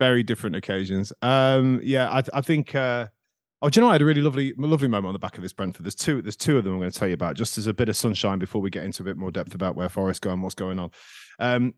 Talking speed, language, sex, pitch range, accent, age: 310 wpm, English, male, 100-140 Hz, British, 30-49